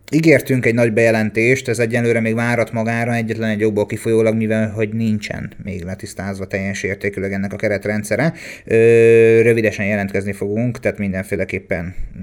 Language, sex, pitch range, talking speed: Hungarian, male, 105-120 Hz, 140 wpm